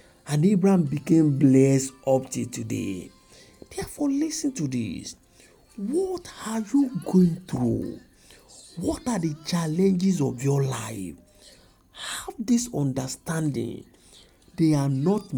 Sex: male